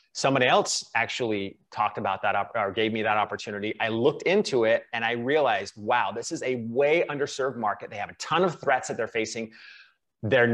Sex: male